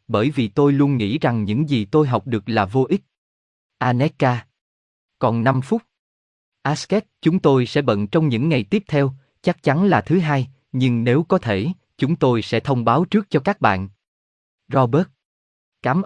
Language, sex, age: Vietnamese, male, 20-39